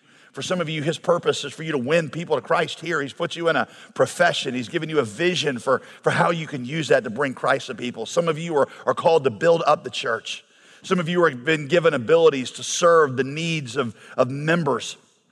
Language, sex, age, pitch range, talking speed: English, male, 50-69, 155-180 Hz, 245 wpm